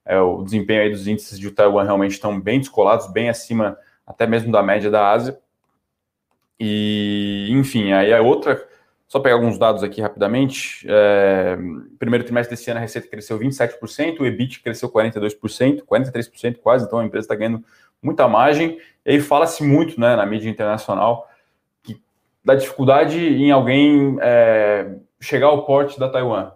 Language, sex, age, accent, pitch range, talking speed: Portuguese, male, 20-39, Brazilian, 105-135 Hz, 160 wpm